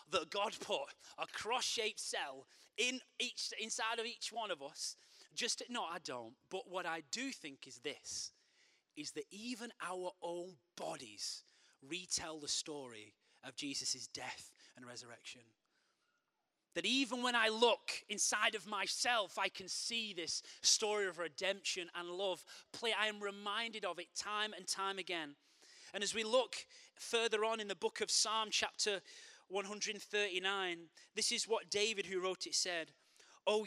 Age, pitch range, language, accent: 30-49, 175-225 Hz, English, British